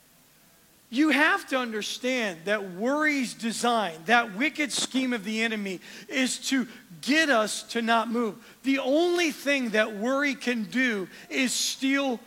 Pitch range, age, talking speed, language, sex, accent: 235-290 Hz, 40-59, 140 wpm, English, male, American